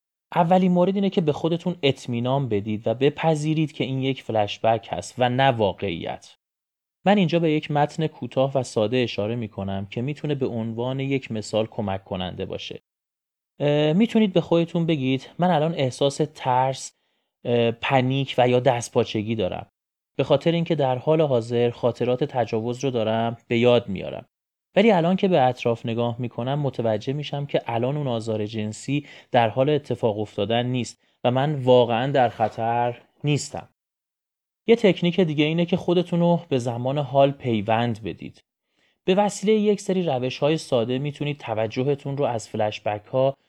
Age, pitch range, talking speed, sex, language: 30-49, 115-150 Hz, 165 wpm, male, Persian